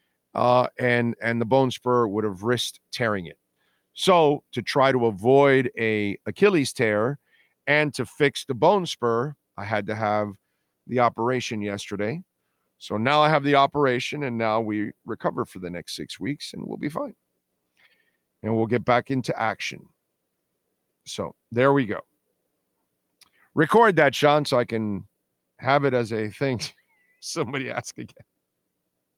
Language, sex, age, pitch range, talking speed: English, male, 40-59, 110-150 Hz, 155 wpm